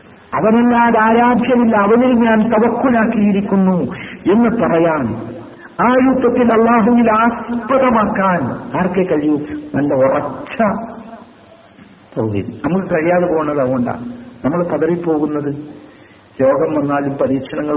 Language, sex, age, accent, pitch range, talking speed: Malayalam, male, 60-79, native, 125-210 Hz, 80 wpm